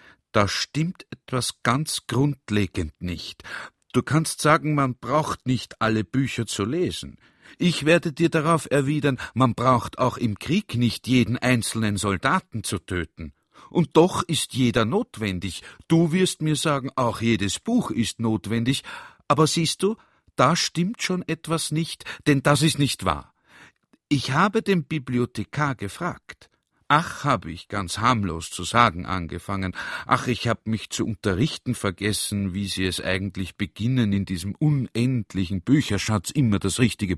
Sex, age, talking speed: male, 50-69, 145 wpm